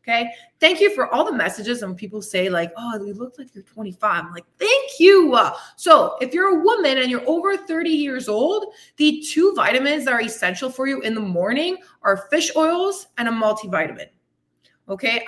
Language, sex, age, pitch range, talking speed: English, female, 20-39, 220-305 Hz, 195 wpm